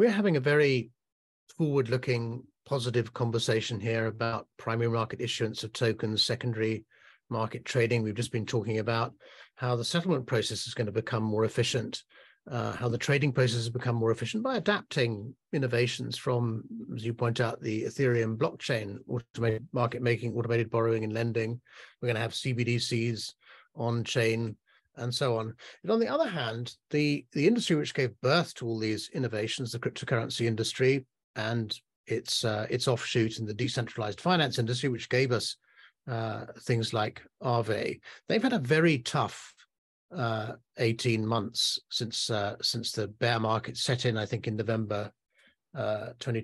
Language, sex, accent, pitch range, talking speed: English, male, British, 115-135 Hz, 160 wpm